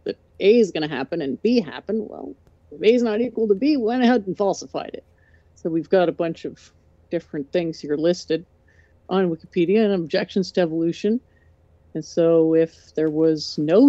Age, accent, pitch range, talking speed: 50-69, American, 155-200 Hz, 190 wpm